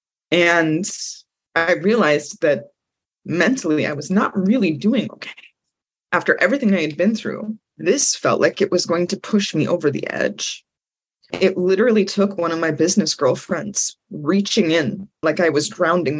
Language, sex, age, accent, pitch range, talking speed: English, female, 20-39, American, 155-195 Hz, 160 wpm